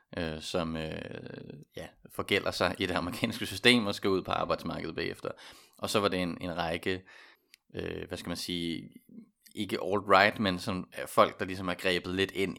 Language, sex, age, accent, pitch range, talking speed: Danish, male, 30-49, native, 85-100 Hz, 190 wpm